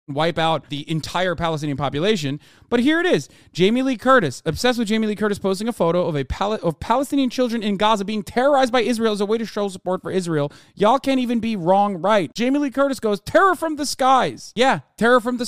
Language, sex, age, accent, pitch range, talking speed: English, male, 30-49, American, 150-210 Hz, 230 wpm